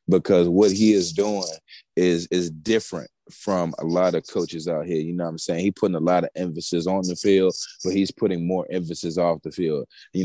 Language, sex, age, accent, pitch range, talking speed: English, male, 20-39, American, 90-110 Hz, 220 wpm